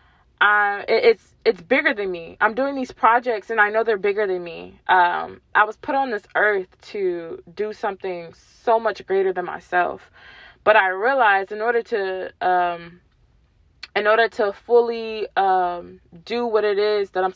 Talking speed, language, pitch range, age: 175 wpm, English, 185-255 Hz, 20-39